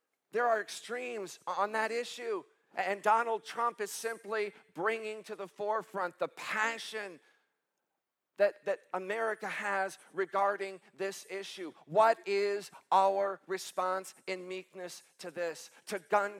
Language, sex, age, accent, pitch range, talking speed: English, male, 50-69, American, 160-210 Hz, 125 wpm